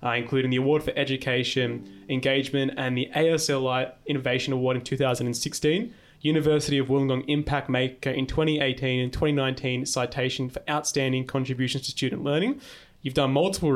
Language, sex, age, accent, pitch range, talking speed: English, male, 20-39, Australian, 130-150 Hz, 145 wpm